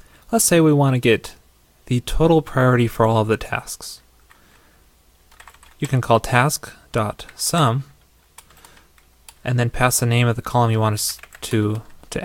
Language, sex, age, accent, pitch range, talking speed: English, male, 20-39, American, 105-130 Hz, 150 wpm